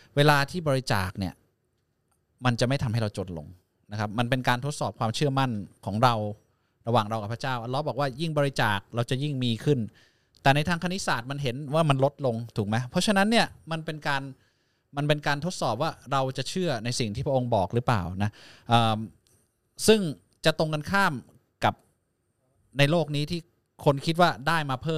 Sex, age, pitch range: male, 20-39, 110-150 Hz